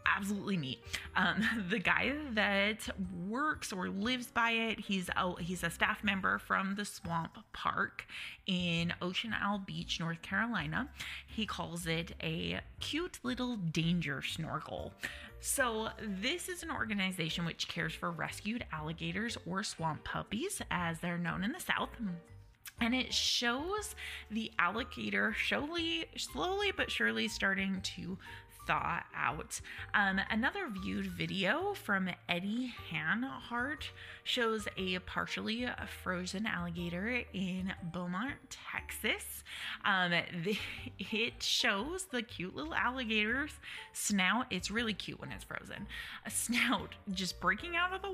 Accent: American